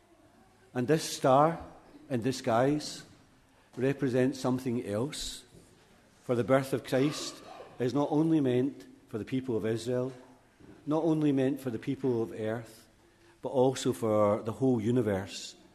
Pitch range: 105-130 Hz